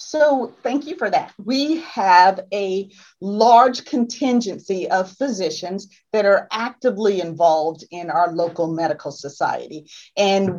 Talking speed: 125 wpm